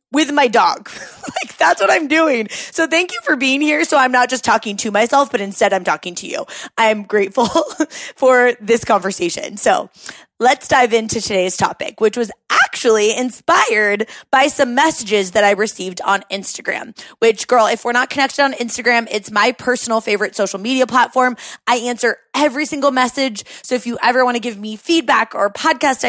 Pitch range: 215-285 Hz